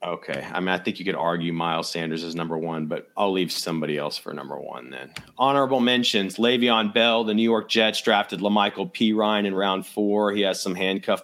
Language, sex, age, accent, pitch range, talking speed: English, male, 30-49, American, 100-115 Hz, 220 wpm